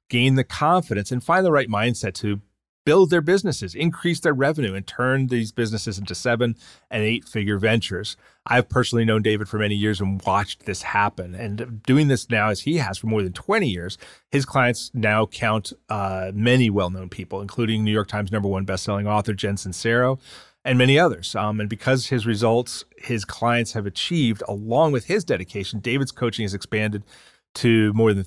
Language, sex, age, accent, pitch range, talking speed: English, male, 30-49, American, 100-125 Hz, 185 wpm